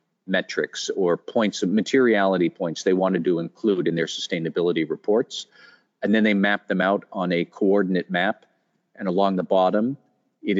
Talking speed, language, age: 165 wpm, English, 40-59